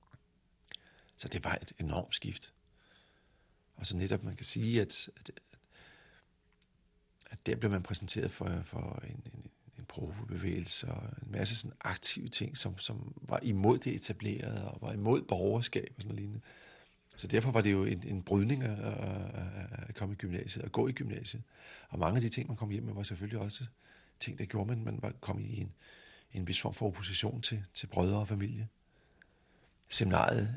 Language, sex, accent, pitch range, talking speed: Danish, male, native, 95-115 Hz, 185 wpm